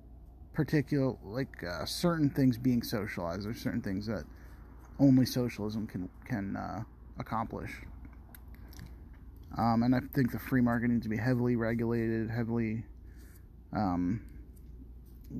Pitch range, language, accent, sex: 80-120 Hz, English, American, male